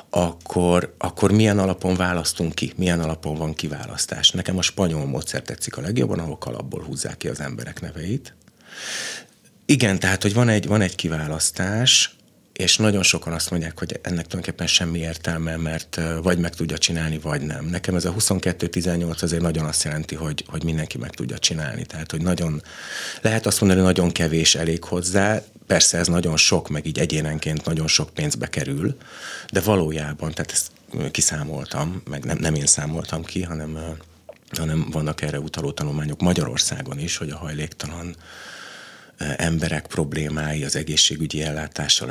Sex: male